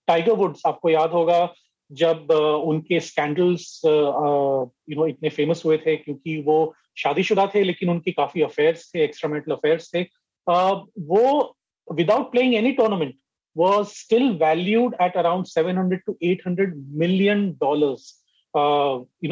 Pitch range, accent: 155-210 Hz, native